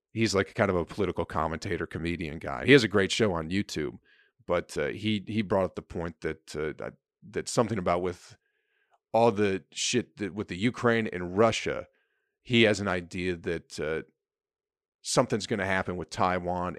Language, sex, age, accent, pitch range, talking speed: English, male, 40-59, American, 85-115 Hz, 185 wpm